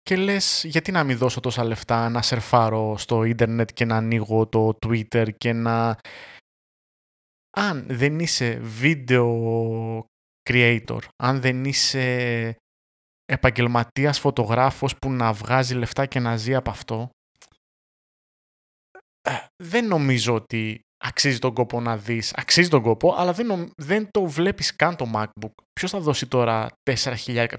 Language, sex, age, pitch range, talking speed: Greek, male, 20-39, 115-135 Hz, 135 wpm